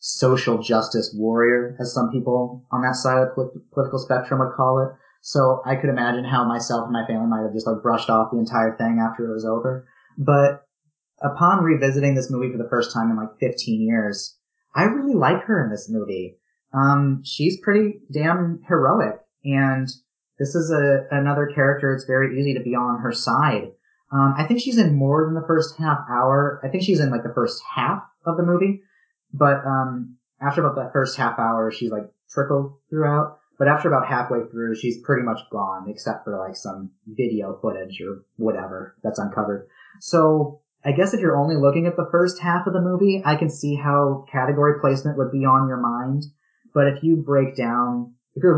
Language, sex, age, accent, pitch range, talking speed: English, male, 30-49, American, 120-150 Hz, 200 wpm